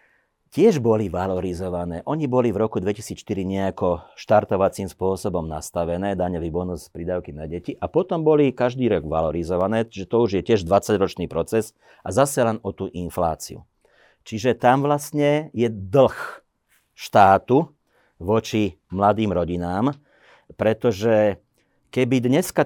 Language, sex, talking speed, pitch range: Slovak, male, 125 wpm, 95-120 Hz